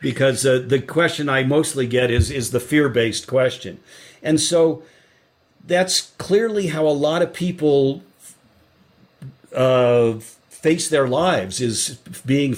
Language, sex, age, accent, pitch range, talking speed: English, male, 50-69, American, 130-170 Hz, 130 wpm